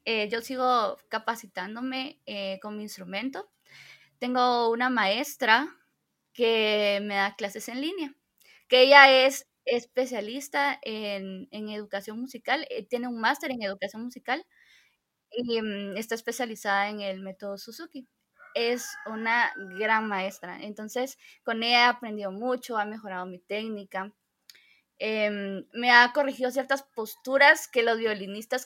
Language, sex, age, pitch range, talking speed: Spanish, female, 20-39, 210-260 Hz, 130 wpm